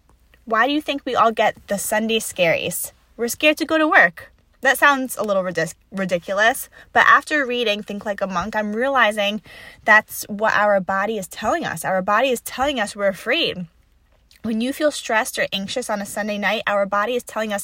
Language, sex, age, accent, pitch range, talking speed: English, female, 10-29, American, 195-245 Hz, 200 wpm